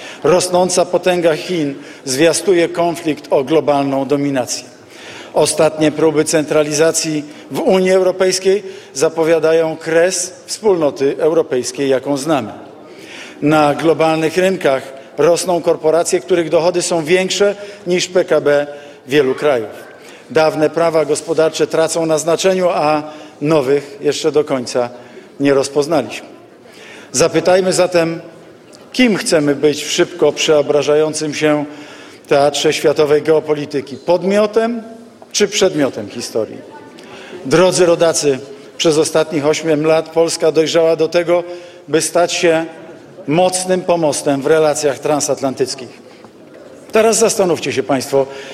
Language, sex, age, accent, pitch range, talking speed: Polish, male, 50-69, native, 150-180 Hz, 105 wpm